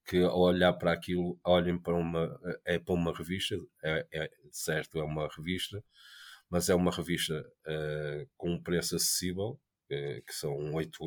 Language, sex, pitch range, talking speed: Portuguese, male, 80-90 Hz, 170 wpm